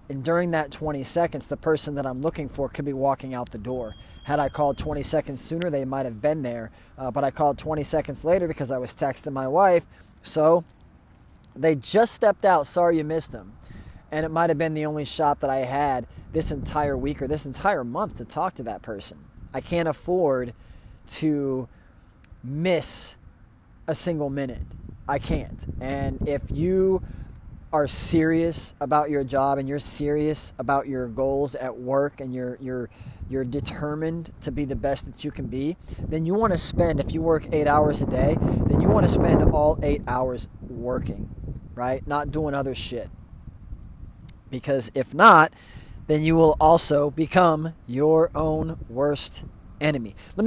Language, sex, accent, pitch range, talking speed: English, male, American, 130-160 Hz, 180 wpm